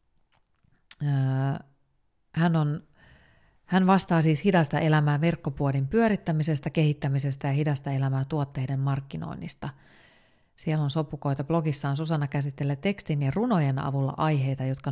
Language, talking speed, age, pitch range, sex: Finnish, 105 wpm, 30-49, 140-170 Hz, female